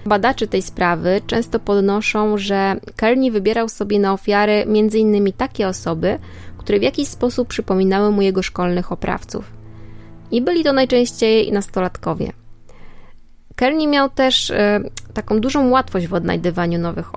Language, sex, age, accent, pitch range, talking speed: Polish, female, 20-39, native, 185-235 Hz, 130 wpm